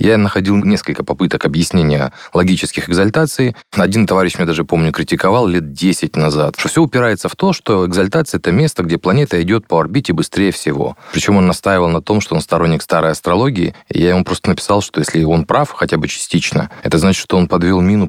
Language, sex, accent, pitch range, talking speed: Russian, male, native, 85-110 Hz, 200 wpm